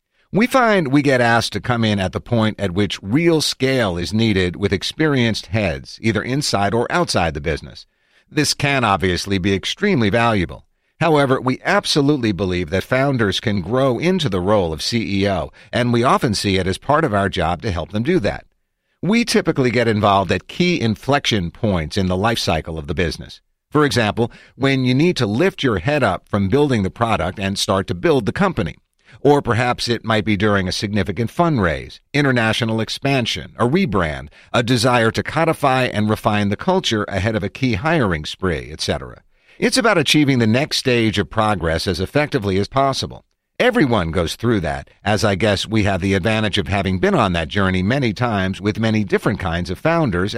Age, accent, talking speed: 50-69, American, 190 wpm